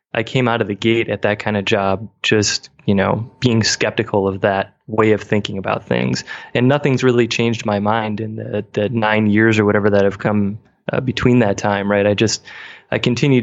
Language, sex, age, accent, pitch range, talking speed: English, male, 20-39, American, 105-120 Hz, 215 wpm